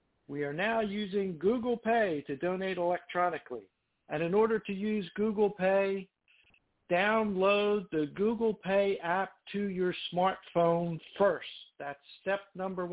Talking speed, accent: 130 wpm, American